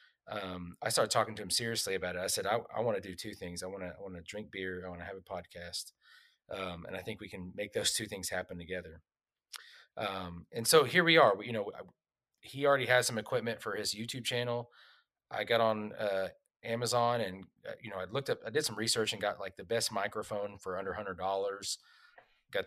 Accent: American